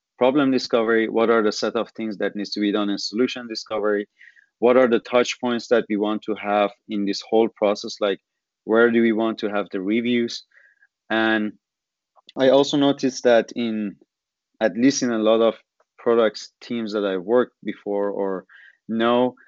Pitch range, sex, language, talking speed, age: 105-120 Hz, male, English, 180 wpm, 30-49